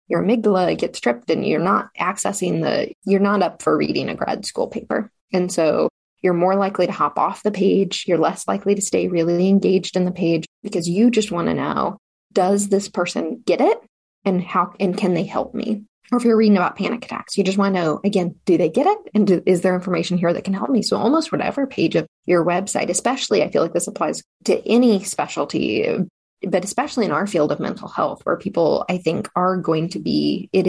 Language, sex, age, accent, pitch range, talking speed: English, female, 20-39, American, 175-205 Hz, 225 wpm